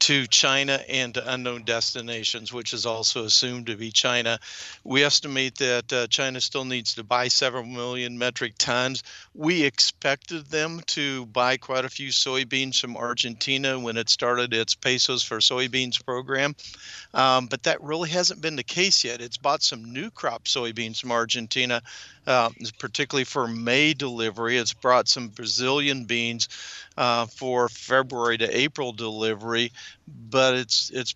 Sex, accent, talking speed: male, American, 155 wpm